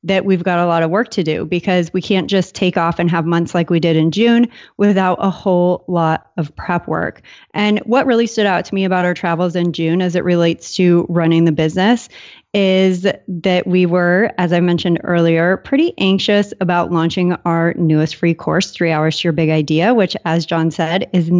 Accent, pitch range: American, 170-200 Hz